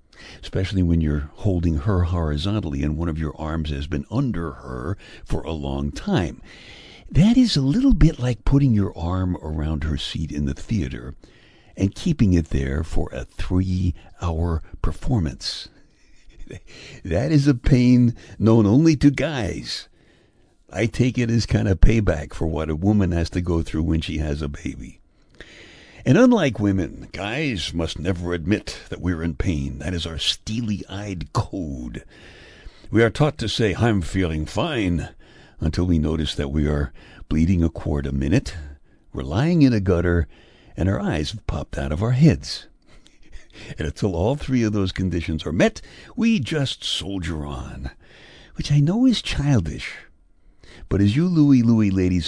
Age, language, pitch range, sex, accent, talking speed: 60-79, English, 75-115 Hz, male, American, 165 wpm